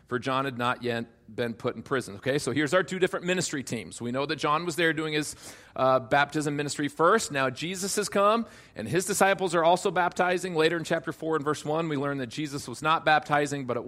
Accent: American